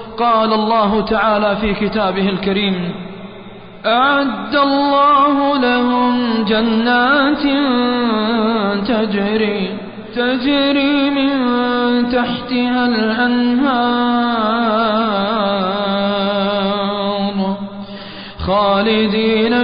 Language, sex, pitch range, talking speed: Arabic, male, 205-230 Hz, 50 wpm